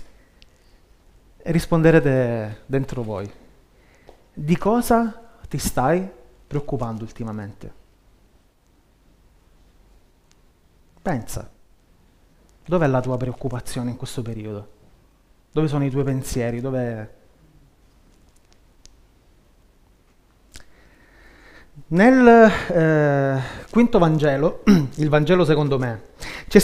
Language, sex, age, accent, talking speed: Italian, male, 30-49, native, 75 wpm